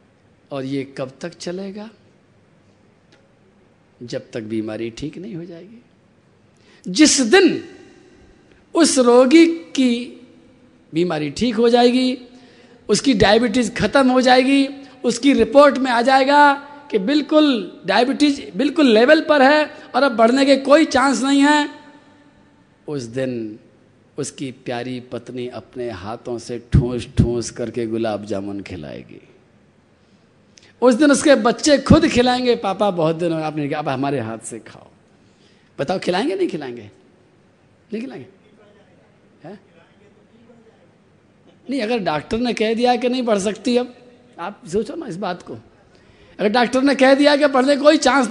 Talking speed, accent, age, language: 135 wpm, native, 50-69, Hindi